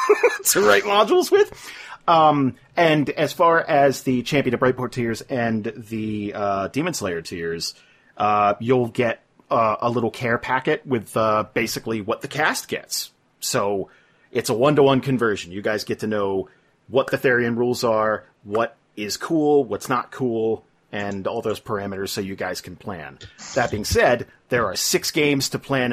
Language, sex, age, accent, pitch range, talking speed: English, male, 30-49, American, 110-140 Hz, 170 wpm